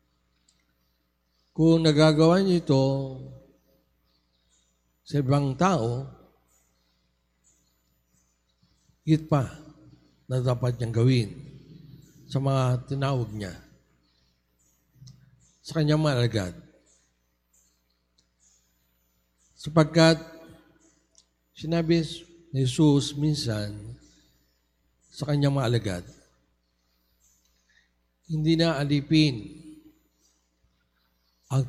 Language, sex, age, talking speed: Filipino, male, 50-69, 55 wpm